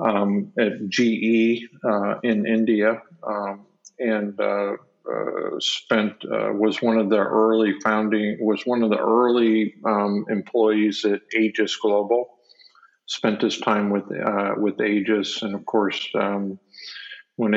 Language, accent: English, American